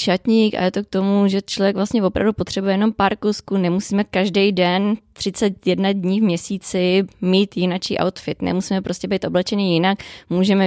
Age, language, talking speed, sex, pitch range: 20-39, Czech, 170 wpm, female, 185-205 Hz